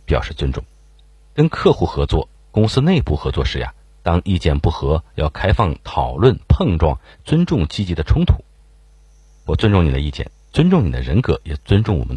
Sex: male